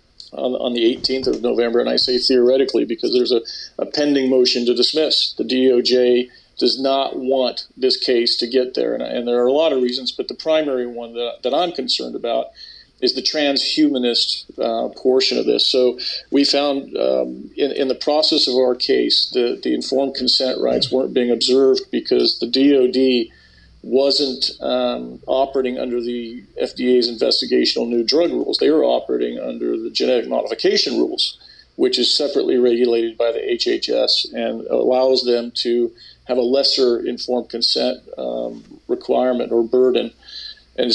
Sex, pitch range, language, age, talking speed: male, 120-145 Hz, English, 50-69, 165 wpm